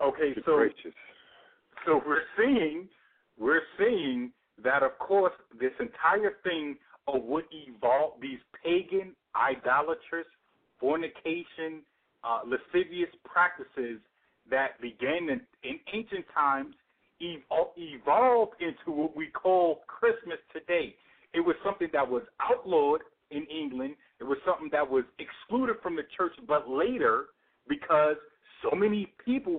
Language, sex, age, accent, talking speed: English, male, 50-69, American, 120 wpm